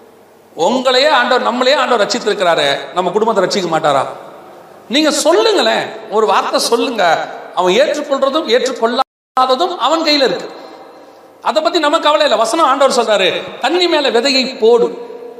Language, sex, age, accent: Tamil, male, 40-59, native